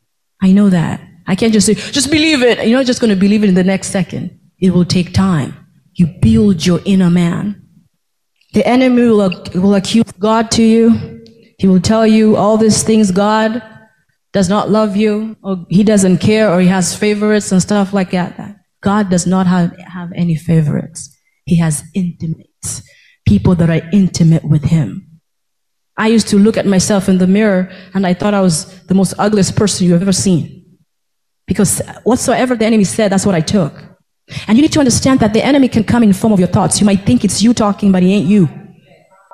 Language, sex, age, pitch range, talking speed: English, female, 20-39, 180-225 Hz, 205 wpm